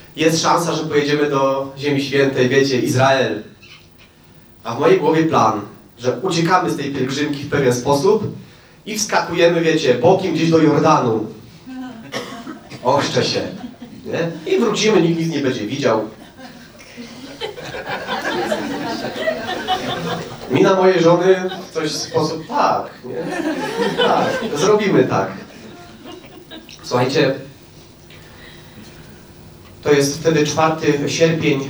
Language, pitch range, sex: Polish, 130-165 Hz, male